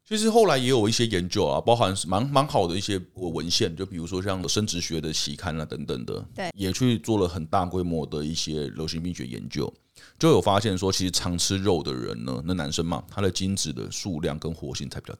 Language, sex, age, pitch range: Chinese, male, 30-49, 85-115 Hz